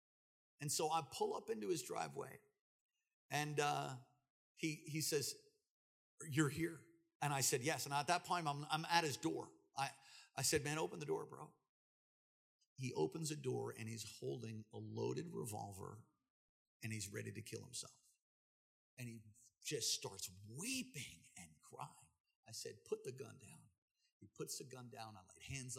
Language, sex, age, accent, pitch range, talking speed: English, male, 50-69, American, 135-200 Hz, 170 wpm